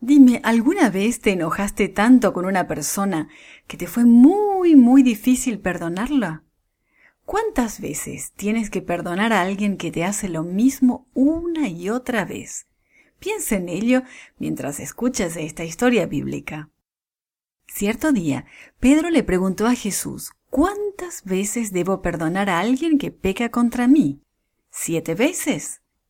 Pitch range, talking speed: 175-265 Hz, 135 wpm